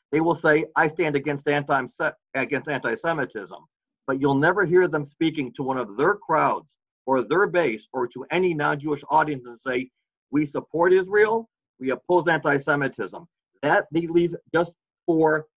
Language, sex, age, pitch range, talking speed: English, male, 50-69, 140-185 Hz, 165 wpm